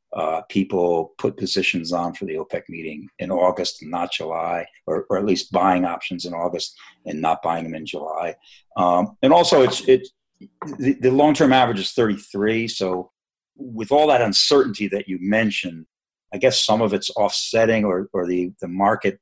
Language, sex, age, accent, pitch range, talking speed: English, male, 50-69, American, 90-110 Hz, 175 wpm